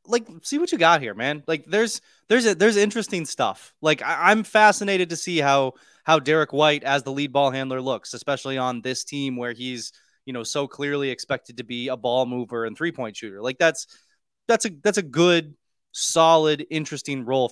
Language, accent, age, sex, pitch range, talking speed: English, American, 20-39, male, 130-190 Hz, 205 wpm